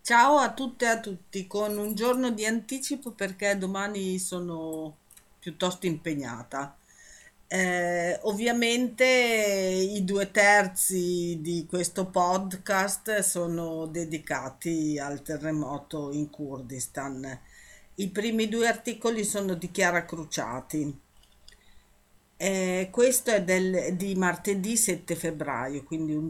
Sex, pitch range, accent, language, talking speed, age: female, 165-205 Hz, native, Italian, 110 wpm, 50-69